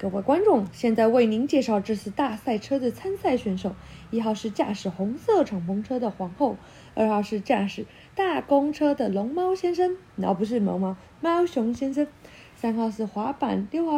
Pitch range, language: 205-290 Hz, Chinese